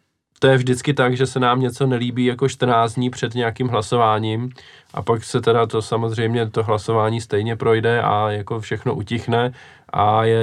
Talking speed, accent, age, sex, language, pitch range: 180 wpm, native, 20-39, male, Czech, 110-125 Hz